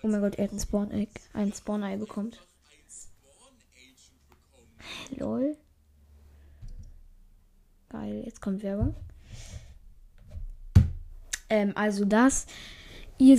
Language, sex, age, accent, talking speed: German, female, 10-29, German, 90 wpm